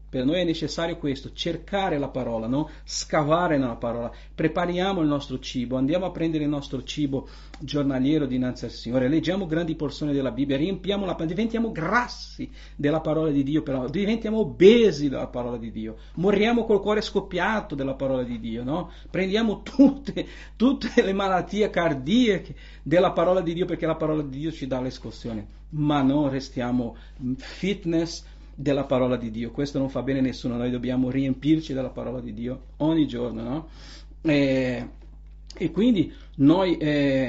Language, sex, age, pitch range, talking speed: Italian, male, 50-69, 130-165 Hz, 165 wpm